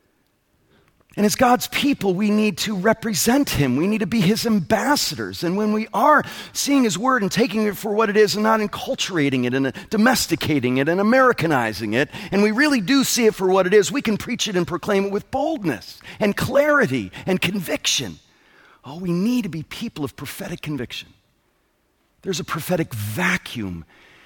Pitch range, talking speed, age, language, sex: 135-215 Hz, 185 wpm, 40-59, English, male